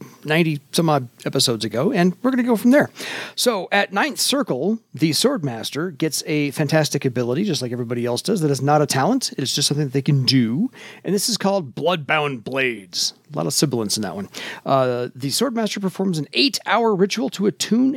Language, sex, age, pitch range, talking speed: English, male, 40-59, 140-210 Hz, 195 wpm